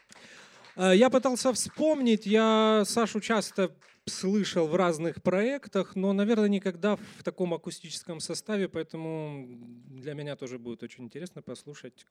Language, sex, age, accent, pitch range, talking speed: Russian, male, 30-49, native, 140-195 Hz, 125 wpm